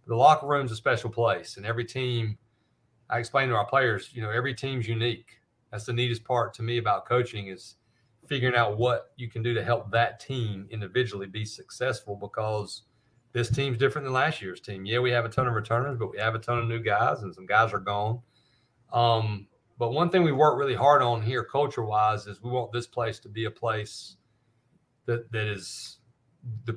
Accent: American